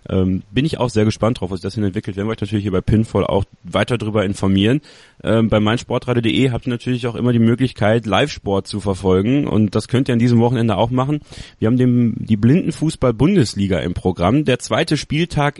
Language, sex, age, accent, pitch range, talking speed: German, male, 30-49, German, 100-130 Hz, 215 wpm